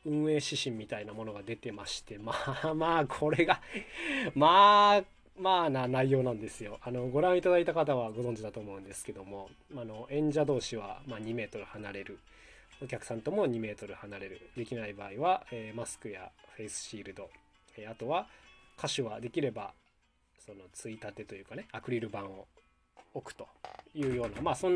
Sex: male